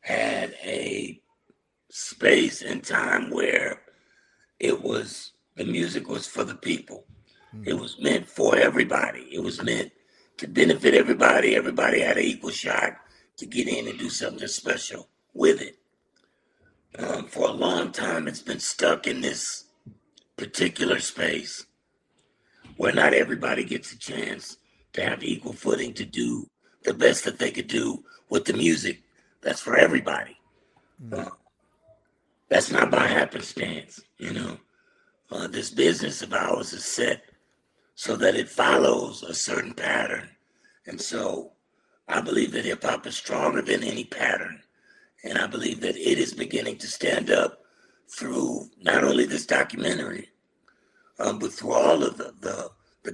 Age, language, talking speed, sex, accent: 60-79, English, 145 wpm, male, American